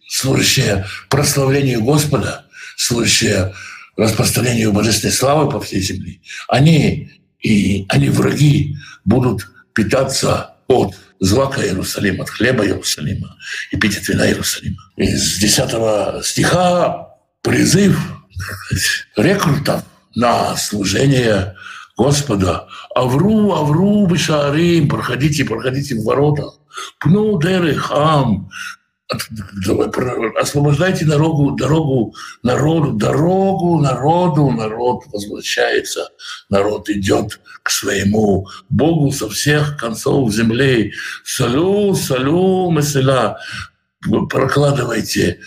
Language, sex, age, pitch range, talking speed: Russian, male, 60-79, 110-155 Hz, 90 wpm